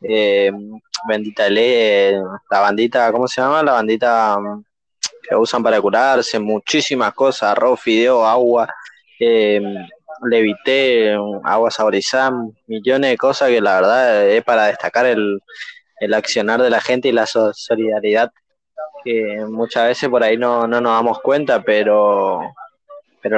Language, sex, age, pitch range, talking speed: Spanish, male, 20-39, 110-140 Hz, 140 wpm